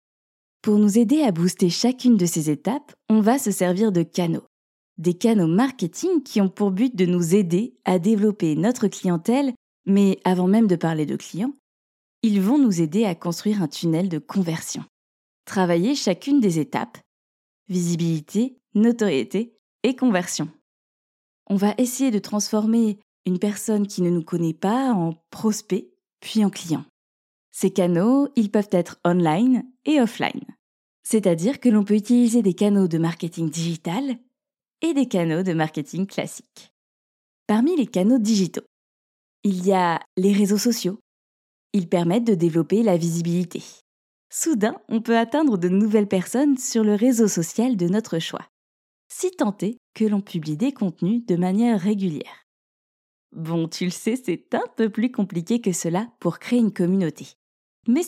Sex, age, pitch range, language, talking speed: female, 20-39, 175-230 Hz, French, 155 wpm